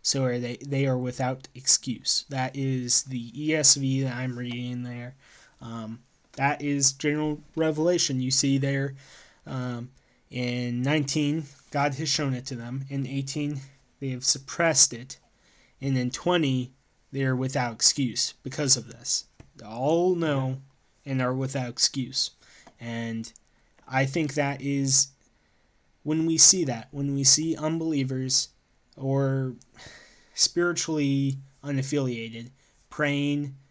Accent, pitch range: American, 130-145 Hz